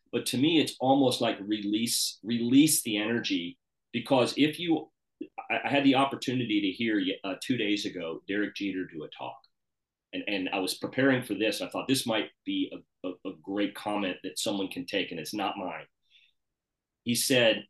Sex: male